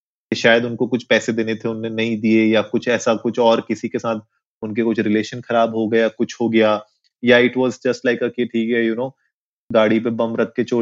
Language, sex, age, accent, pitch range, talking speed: Hindi, male, 20-39, native, 110-130 Hz, 120 wpm